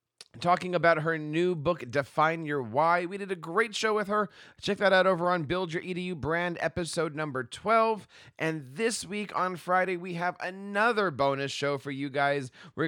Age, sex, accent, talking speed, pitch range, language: 30-49, male, American, 190 wpm, 145-185 Hz, English